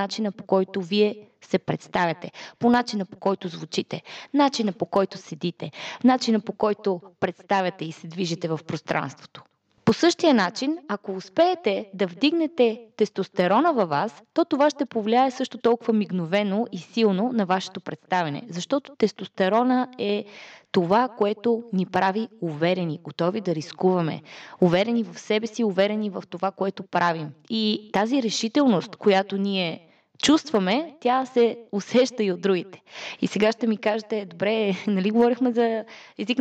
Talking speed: 145 wpm